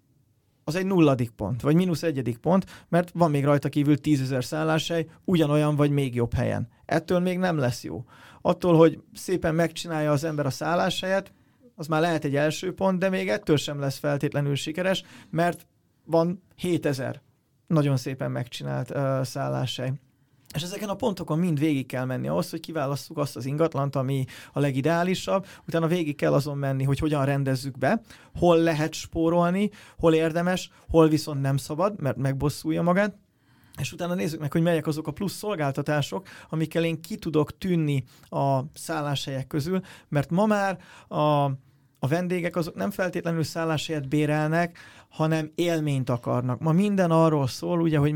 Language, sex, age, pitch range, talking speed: Hungarian, male, 30-49, 135-170 Hz, 160 wpm